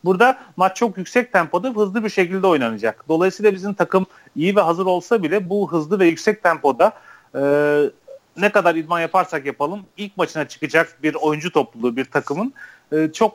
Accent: native